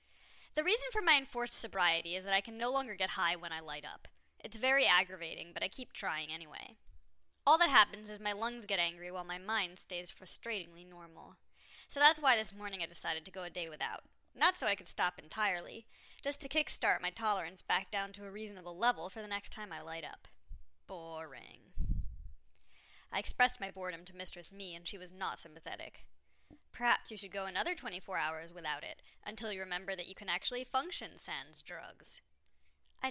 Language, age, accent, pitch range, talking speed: English, 10-29, American, 165-225 Hz, 200 wpm